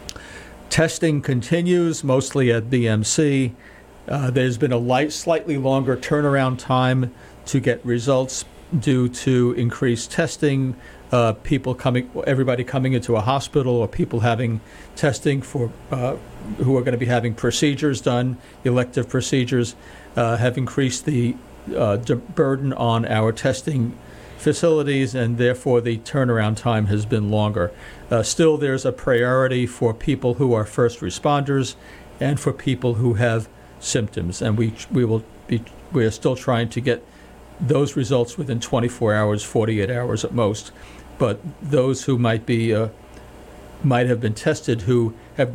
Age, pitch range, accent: 50-69, 115-135 Hz, American